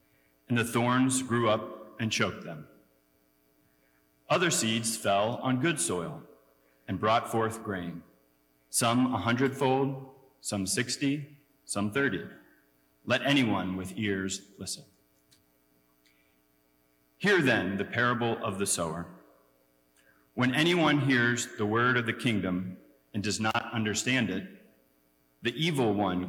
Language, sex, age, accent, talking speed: English, male, 40-59, American, 120 wpm